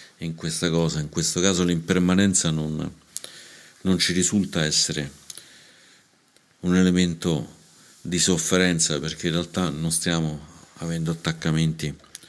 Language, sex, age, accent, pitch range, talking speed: Italian, male, 50-69, native, 80-90 Hz, 105 wpm